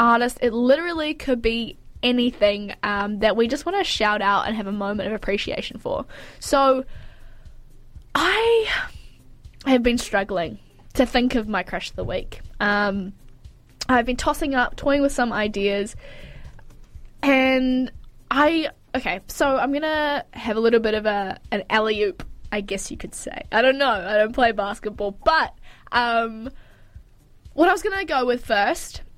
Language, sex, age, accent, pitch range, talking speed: English, female, 10-29, Australian, 200-260 Hz, 160 wpm